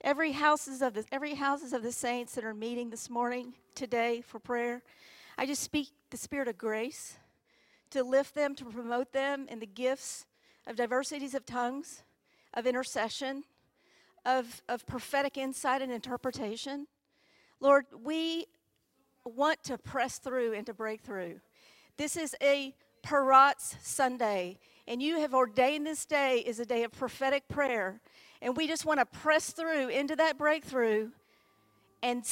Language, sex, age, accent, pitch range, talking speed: English, female, 50-69, American, 245-300 Hz, 155 wpm